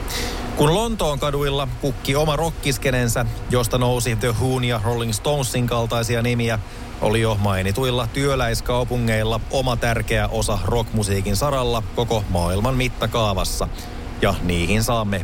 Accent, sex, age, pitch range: native, male, 30-49, 105-130 Hz